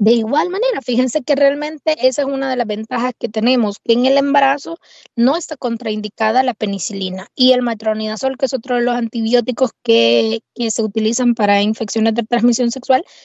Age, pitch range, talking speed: 20-39, 210-260 Hz, 185 wpm